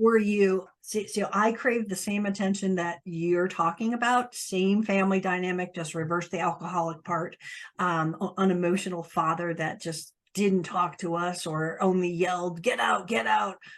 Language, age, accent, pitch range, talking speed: English, 50-69, American, 180-230 Hz, 165 wpm